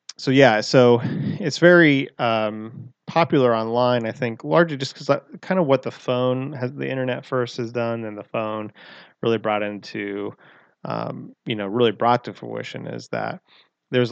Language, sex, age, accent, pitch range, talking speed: English, male, 20-39, American, 105-120 Hz, 170 wpm